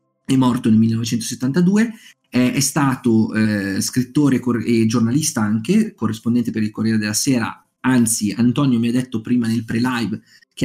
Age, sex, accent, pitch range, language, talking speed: 30-49, male, native, 115-145 Hz, Italian, 165 wpm